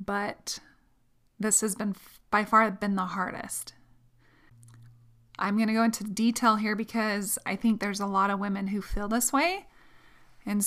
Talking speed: 165 wpm